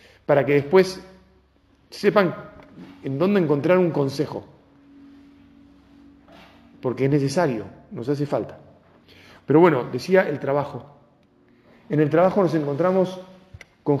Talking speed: 110 wpm